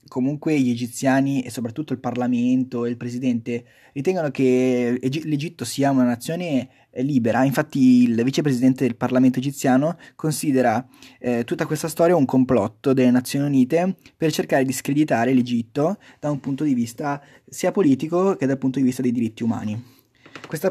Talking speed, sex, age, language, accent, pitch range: 160 wpm, male, 20-39, Italian, native, 125-155 Hz